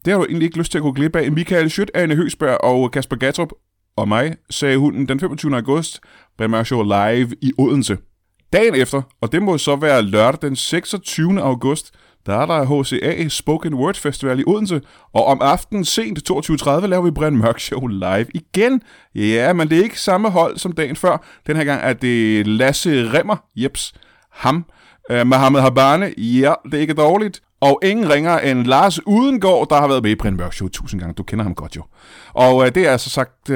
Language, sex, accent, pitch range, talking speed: Danish, male, native, 125-175 Hz, 205 wpm